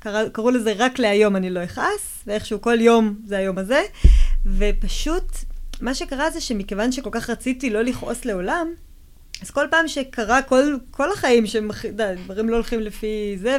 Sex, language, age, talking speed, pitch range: female, Hebrew, 20-39, 170 wpm, 205-270 Hz